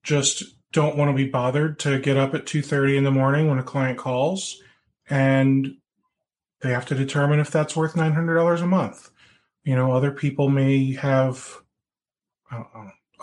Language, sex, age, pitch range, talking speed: English, male, 30-49, 125-150 Hz, 170 wpm